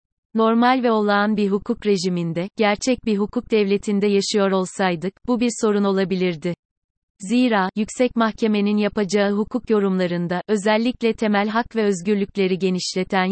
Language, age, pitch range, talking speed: Turkish, 30-49, 190-220 Hz, 125 wpm